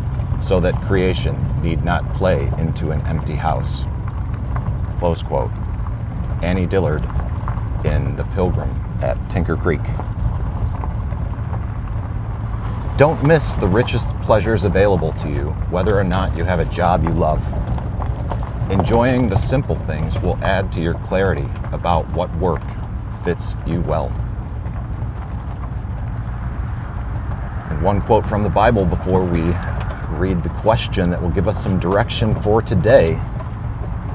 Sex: male